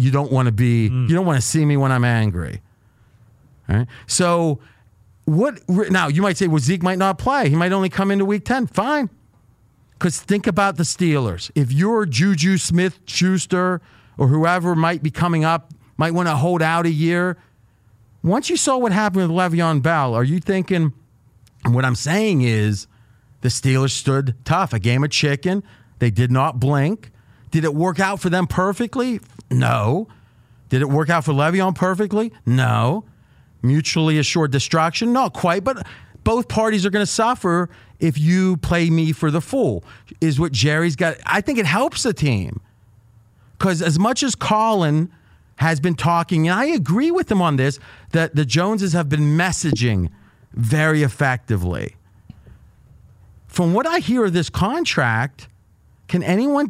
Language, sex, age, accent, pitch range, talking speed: English, male, 40-59, American, 125-185 Hz, 170 wpm